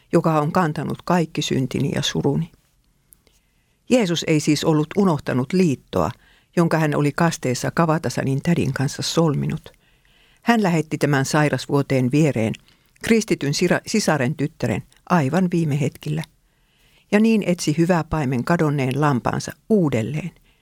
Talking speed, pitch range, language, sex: 115 wpm, 140-175 Hz, Finnish, female